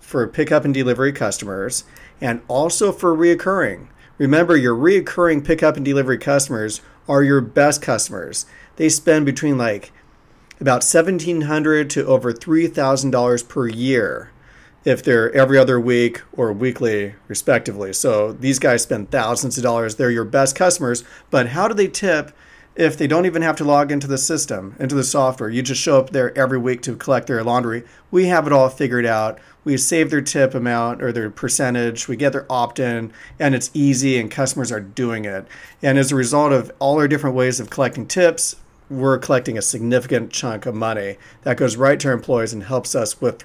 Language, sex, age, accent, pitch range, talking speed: English, male, 40-59, American, 120-150 Hz, 185 wpm